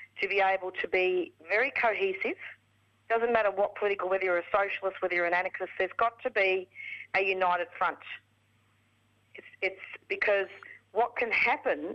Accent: Australian